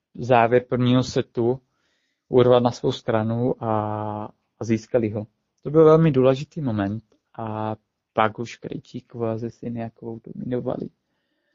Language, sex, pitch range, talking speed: Czech, male, 115-140 Hz, 125 wpm